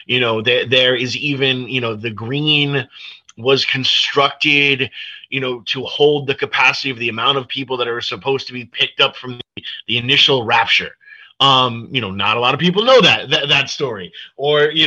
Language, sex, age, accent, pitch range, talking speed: English, male, 30-49, American, 100-130 Hz, 200 wpm